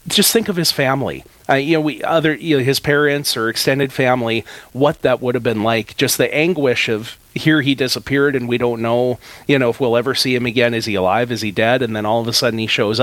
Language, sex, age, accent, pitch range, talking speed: English, male, 40-59, American, 115-150 Hz, 250 wpm